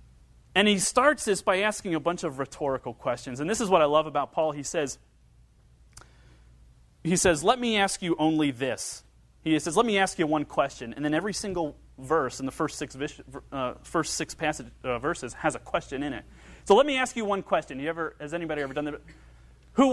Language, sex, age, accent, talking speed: English, male, 30-49, American, 215 wpm